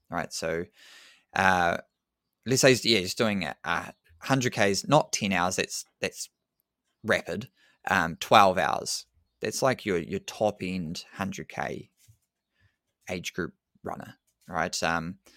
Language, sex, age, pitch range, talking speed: English, male, 20-39, 90-110 Hz, 115 wpm